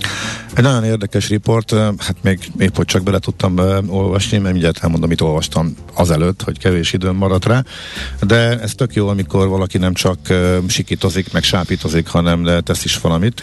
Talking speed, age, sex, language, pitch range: 180 wpm, 50-69, male, Hungarian, 85-100 Hz